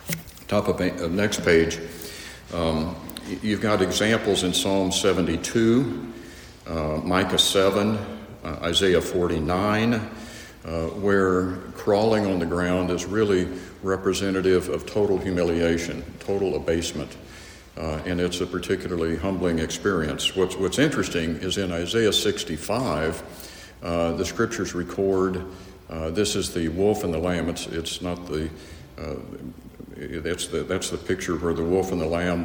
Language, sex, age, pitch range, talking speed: English, male, 60-79, 85-95 Hz, 135 wpm